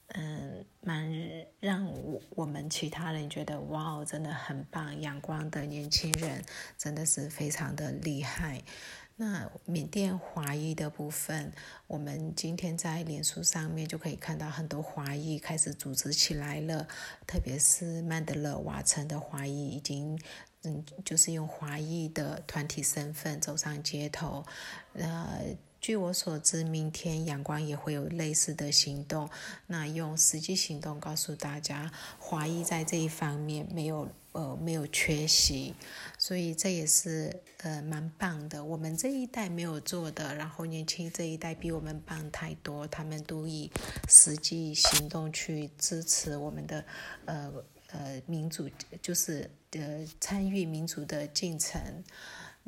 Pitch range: 150-165 Hz